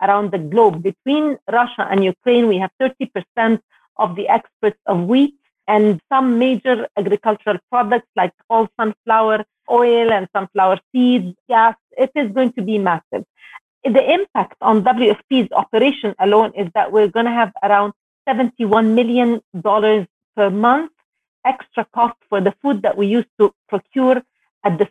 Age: 40-59